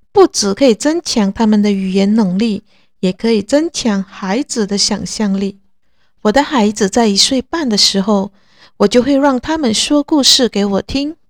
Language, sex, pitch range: Chinese, female, 195-255 Hz